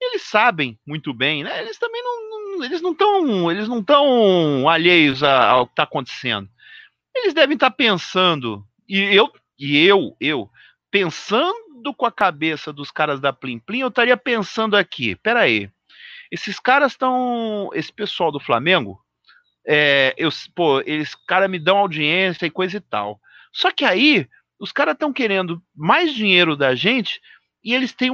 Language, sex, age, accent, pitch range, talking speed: Portuguese, male, 40-59, Brazilian, 165-255 Hz, 165 wpm